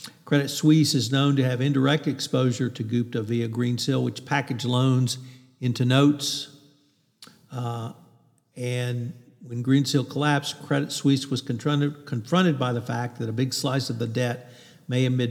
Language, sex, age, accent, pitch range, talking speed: English, male, 50-69, American, 120-140 Hz, 155 wpm